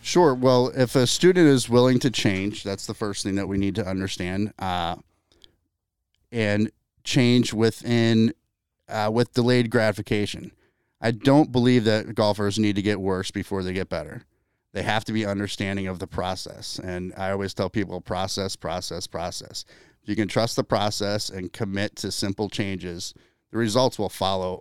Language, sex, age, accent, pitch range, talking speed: English, male, 30-49, American, 95-115 Hz, 170 wpm